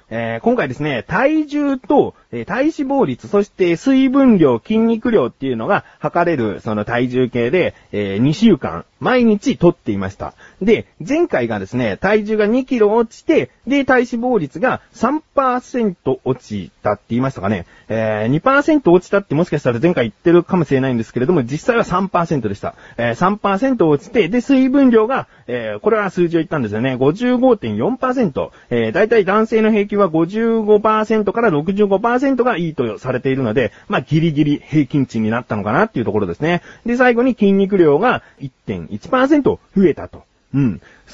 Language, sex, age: Japanese, male, 40-59